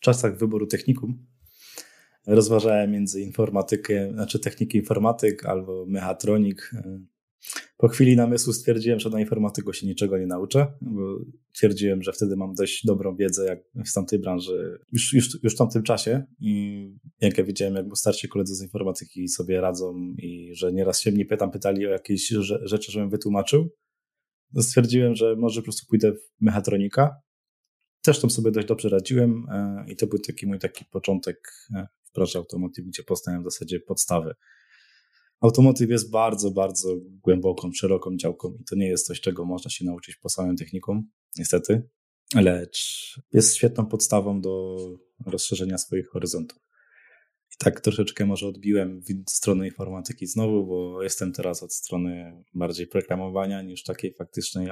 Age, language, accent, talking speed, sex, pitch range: 20-39, Polish, native, 155 wpm, male, 95-115 Hz